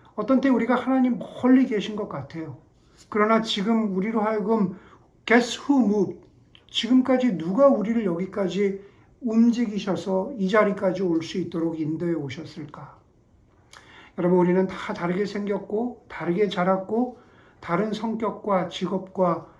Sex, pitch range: male, 170-215 Hz